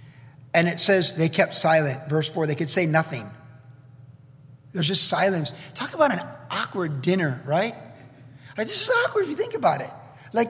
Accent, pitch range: American, 150-195 Hz